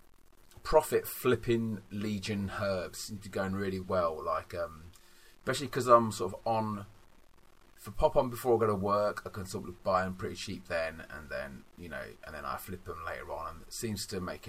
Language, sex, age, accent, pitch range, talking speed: English, male, 30-49, British, 95-115 Hz, 210 wpm